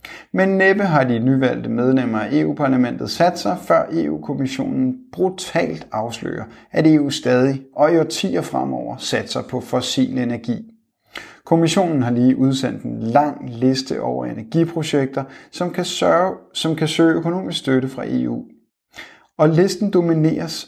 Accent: native